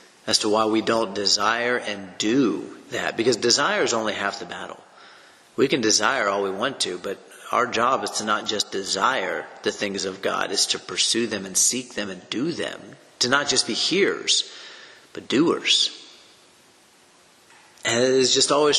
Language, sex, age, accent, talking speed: English, male, 40-59, American, 180 wpm